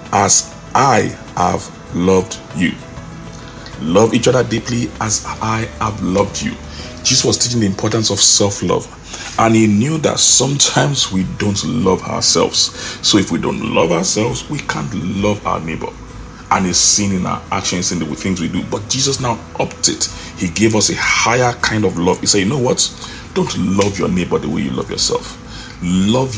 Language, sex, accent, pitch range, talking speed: English, male, Nigerian, 95-115 Hz, 180 wpm